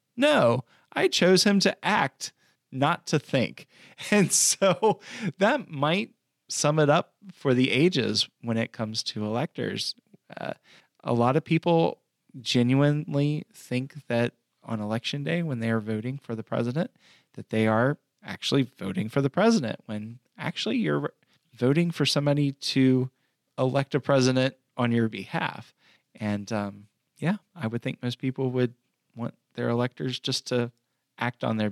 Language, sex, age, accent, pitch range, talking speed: English, male, 20-39, American, 115-145 Hz, 150 wpm